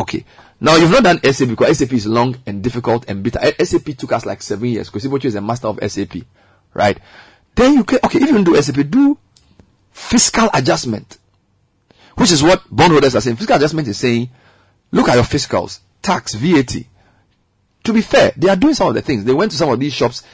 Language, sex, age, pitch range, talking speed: English, male, 40-59, 105-165 Hz, 210 wpm